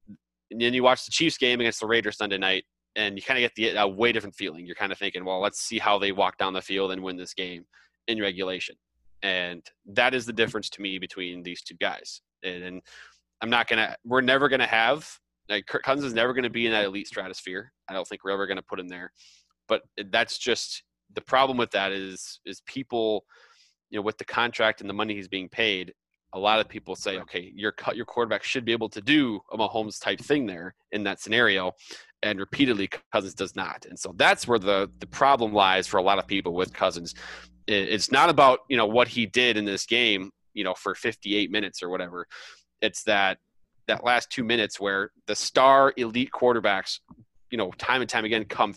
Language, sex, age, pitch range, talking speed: English, male, 20-39, 95-120 Hz, 225 wpm